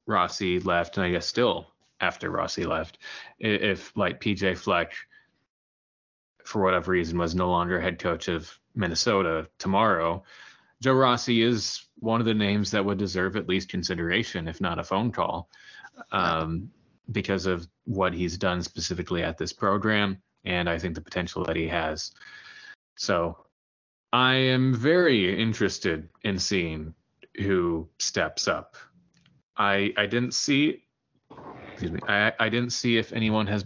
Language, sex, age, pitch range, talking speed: English, male, 30-49, 90-110 Hz, 150 wpm